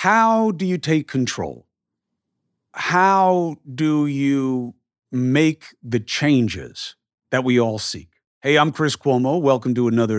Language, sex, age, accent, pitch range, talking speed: English, male, 50-69, American, 110-135 Hz, 130 wpm